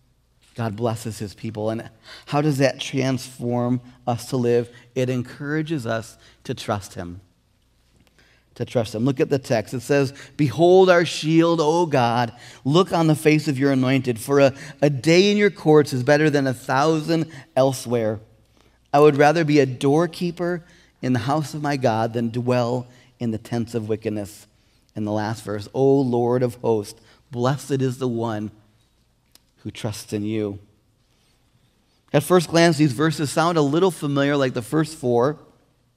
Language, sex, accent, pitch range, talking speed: English, male, American, 120-150 Hz, 165 wpm